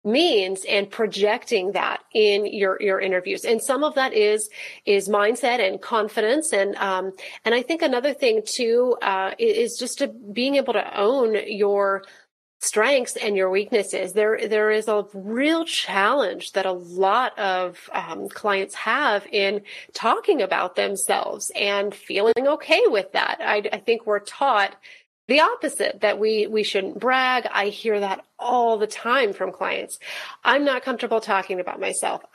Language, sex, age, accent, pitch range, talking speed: English, female, 30-49, American, 200-260 Hz, 160 wpm